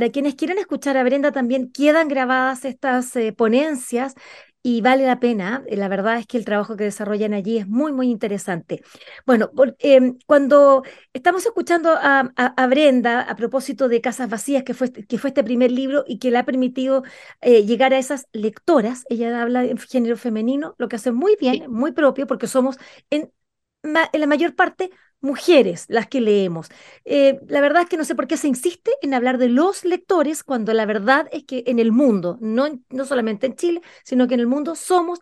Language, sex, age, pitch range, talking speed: Spanish, female, 30-49, 235-295 Hz, 200 wpm